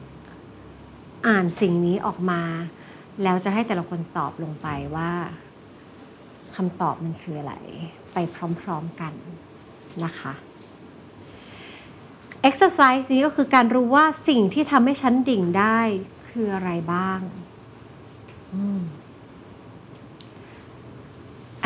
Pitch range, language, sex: 175-255 Hz, Thai, female